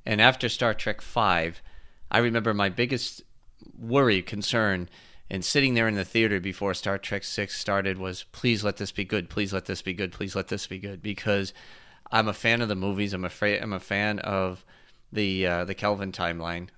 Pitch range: 95-120 Hz